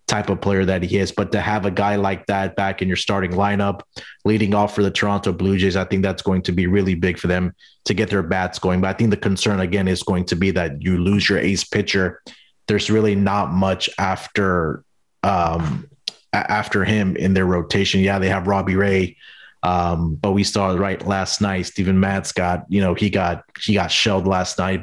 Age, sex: 30-49, male